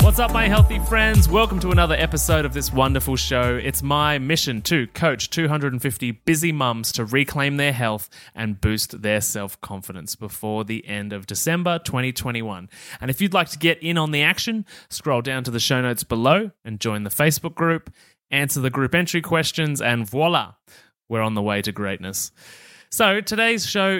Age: 20-39